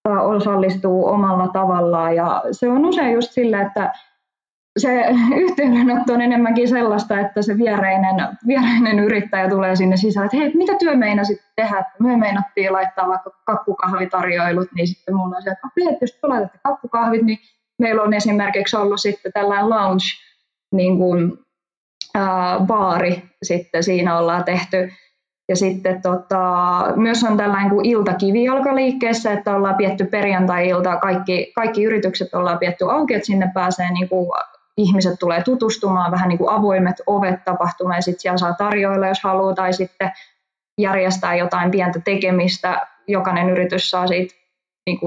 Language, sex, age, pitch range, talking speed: Finnish, female, 20-39, 180-215 Hz, 140 wpm